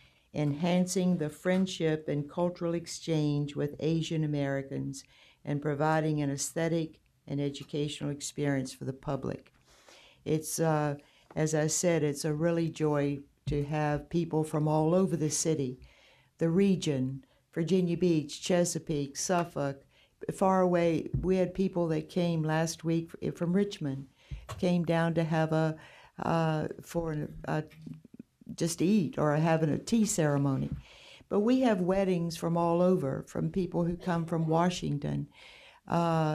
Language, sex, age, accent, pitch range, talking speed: English, female, 60-79, American, 150-180 Hz, 135 wpm